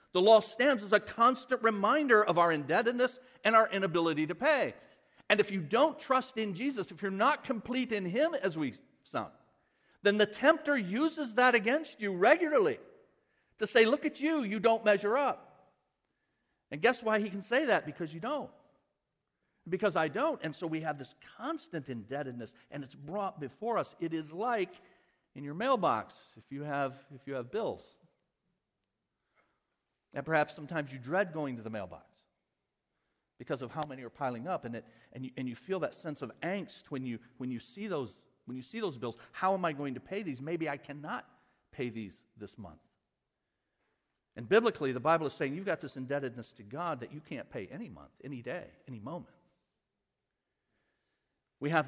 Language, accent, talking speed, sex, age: English, American, 185 wpm, male, 50-69